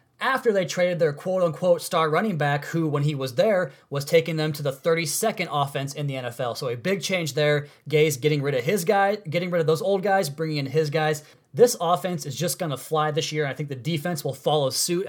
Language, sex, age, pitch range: English, male, 20-39, 145-175 Hz